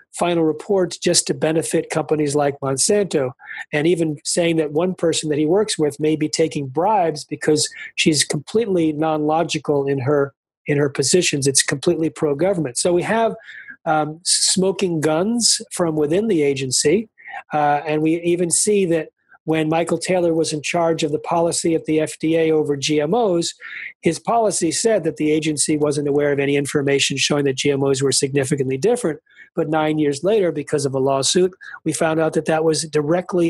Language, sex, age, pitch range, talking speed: English, male, 40-59, 150-180 Hz, 170 wpm